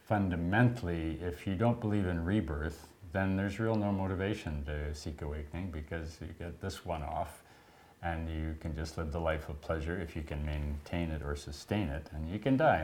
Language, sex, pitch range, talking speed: English, male, 80-100 Hz, 195 wpm